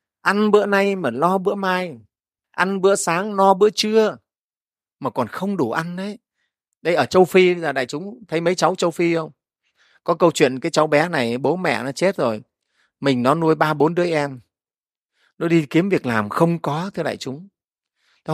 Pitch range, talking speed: 135-180 Hz, 205 wpm